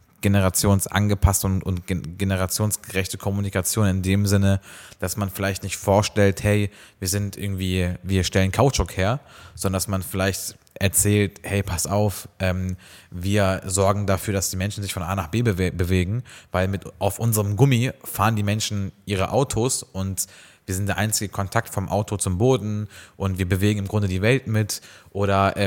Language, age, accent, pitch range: German, 20-39, German, 95-115 Hz